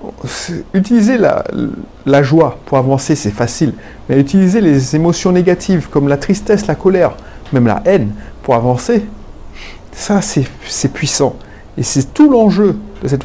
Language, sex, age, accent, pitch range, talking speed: French, male, 30-49, French, 120-170 Hz, 150 wpm